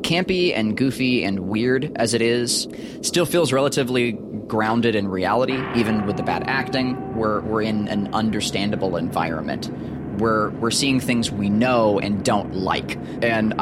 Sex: male